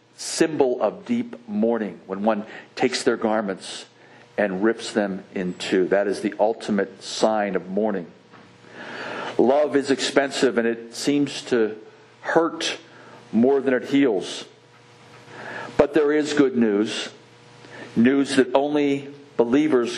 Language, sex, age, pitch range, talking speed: English, male, 50-69, 105-135 Hz, 125 wpm